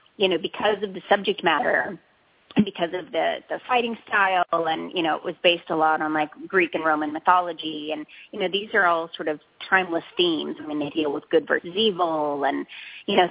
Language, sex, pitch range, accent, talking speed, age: English, female, 155-215 Hz, American, 220 wpm, 30-49